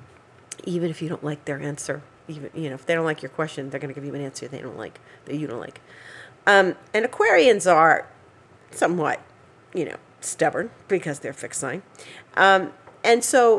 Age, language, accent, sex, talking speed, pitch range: 40-59, English, American, female, 205 wpm, 150-225 Hz